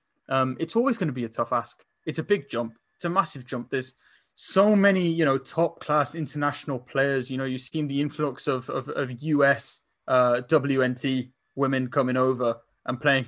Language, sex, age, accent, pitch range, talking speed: English, male, 20-39, British, 125-150 Hz, 195 wpm